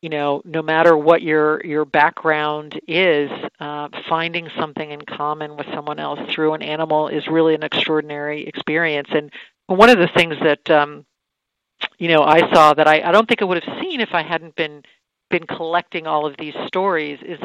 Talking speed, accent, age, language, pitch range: 195 wpm, American, 50-69, English, 150-165 Hz